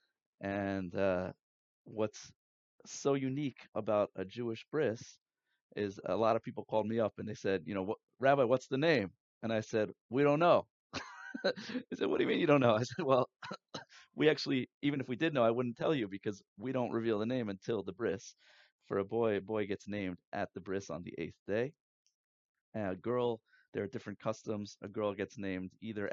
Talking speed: 205 wpm